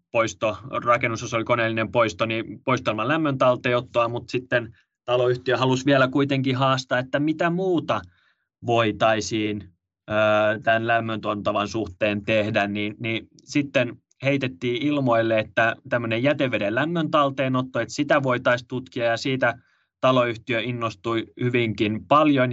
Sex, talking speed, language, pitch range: male, 115 wpm, Finnish, 105-125 Hz